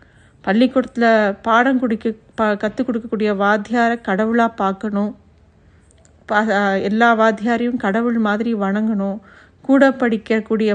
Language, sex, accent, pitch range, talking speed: Tamil, female, native, 215-265 Hz, 85 wpm